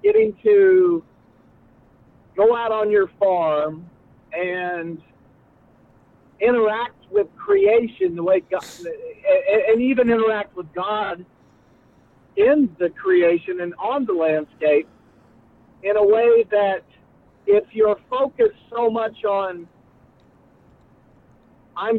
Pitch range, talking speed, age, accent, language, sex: 170-255 Hz, 100 wpm, 50-69, American, English, male